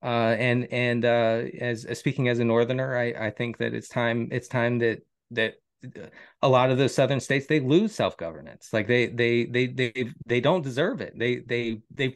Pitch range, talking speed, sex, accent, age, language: 135-185 Hz, 200 wpm, male, American, 30-49, English